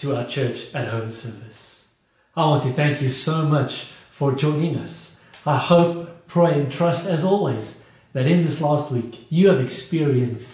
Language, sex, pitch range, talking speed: English, male, 130-160 Hz, 175 wpm